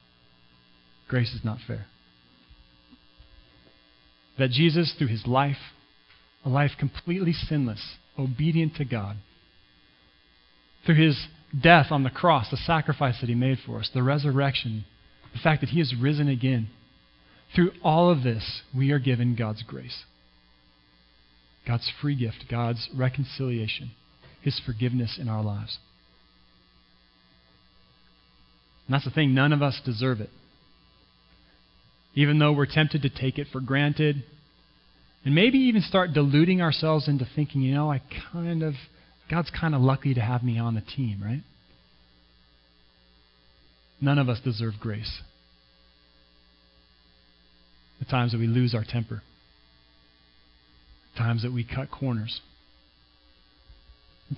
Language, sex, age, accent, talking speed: English, male, 40-59, American, 130 wpm